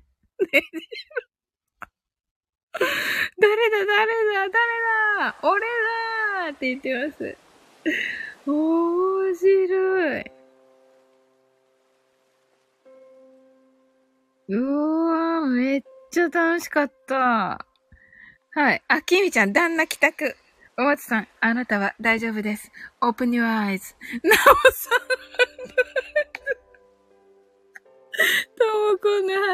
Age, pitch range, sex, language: 20-39, 250-375 Hz, female, Japanese